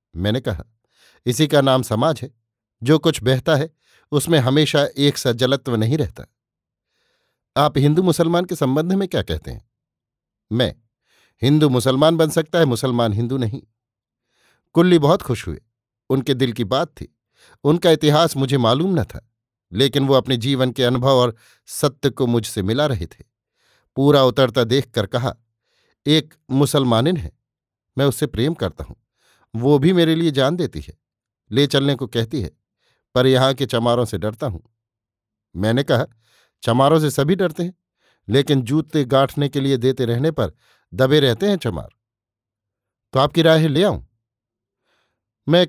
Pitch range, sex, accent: 115-150 Hz, male, native